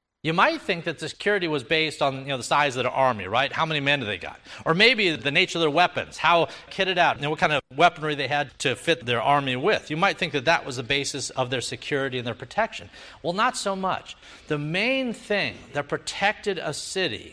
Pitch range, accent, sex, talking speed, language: 130-195 Hz, American, male, 245 wpm, English